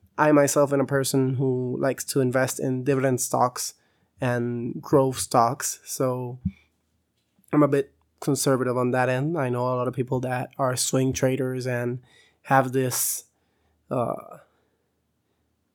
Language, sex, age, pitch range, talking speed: English, male, 20-39, 125-145 Hz, 140 wpm